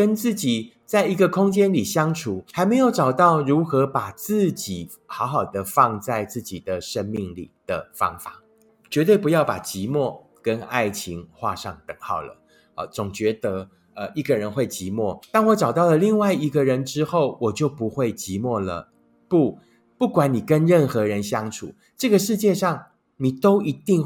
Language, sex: Chinese, male